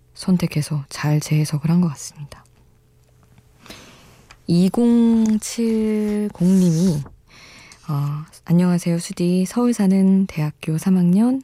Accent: native